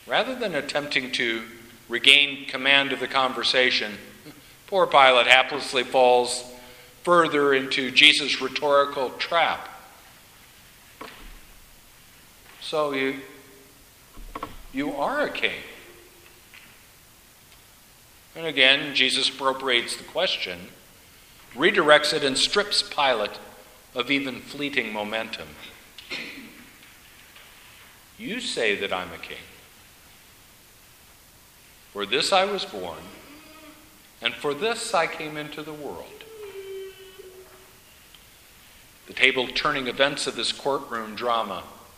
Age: 50-69